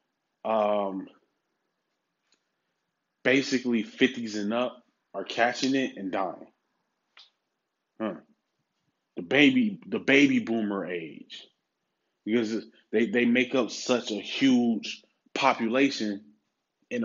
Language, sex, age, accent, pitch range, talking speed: English, male, 20-39, American, 115-150 Hz, 95 wpm